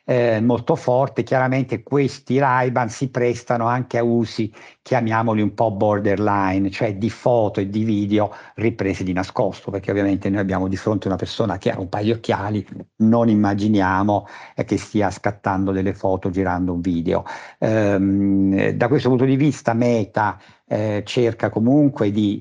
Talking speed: 160 wpm